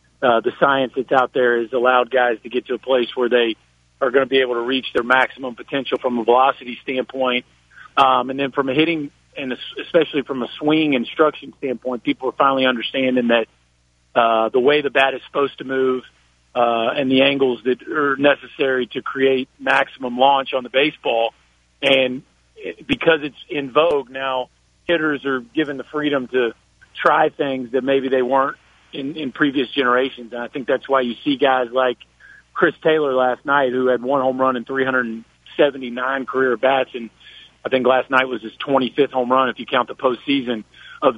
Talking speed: 190 wpm